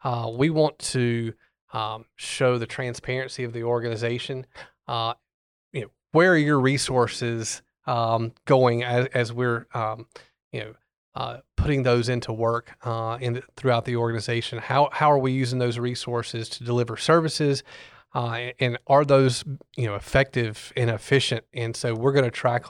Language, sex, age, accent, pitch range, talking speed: English, male, 30-49, American, 120-135 Hz, 165 wpm